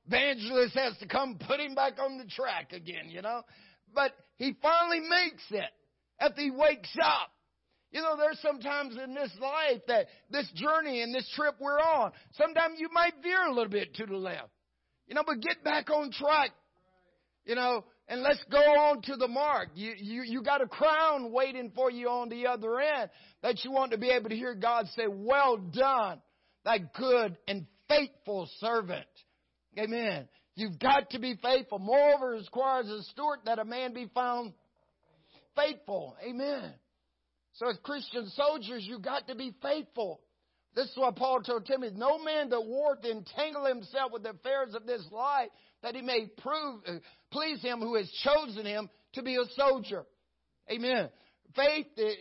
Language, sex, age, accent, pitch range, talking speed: English, male, 50-69, American, 220-285 Hz, 175 wpm